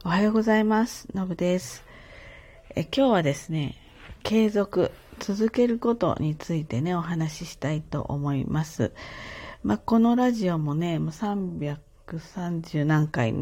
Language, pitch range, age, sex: Japanese, 145-215 Hz, 40-59, female